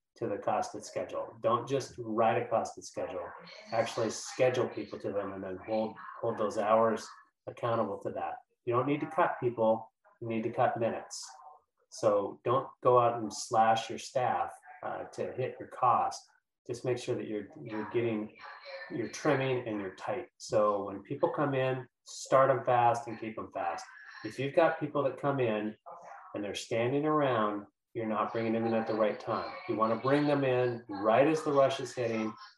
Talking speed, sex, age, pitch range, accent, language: 190 wpm, male, 30-49, 110-135 Hz, American, English